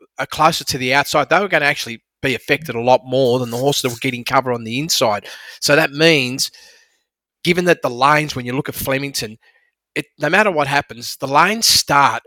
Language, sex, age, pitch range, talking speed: English, male, 30-49, 125-155 Hz, 220 wpm